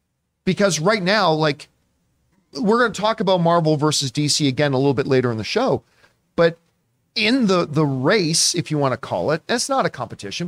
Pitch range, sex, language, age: 130-180 Hz, male, English, 40-59